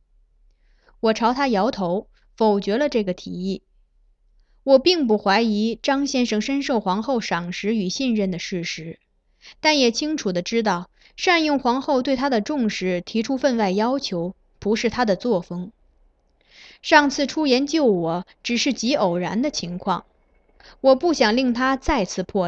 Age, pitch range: 20-39, 185-270 Hz